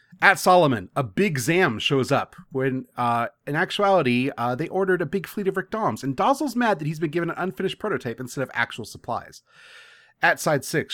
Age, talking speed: 30-49, 205 wpm